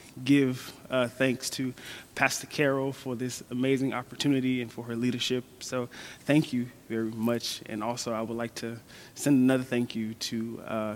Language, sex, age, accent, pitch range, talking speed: English, male, 20-39, American, 115-135 Hz, 170 wpm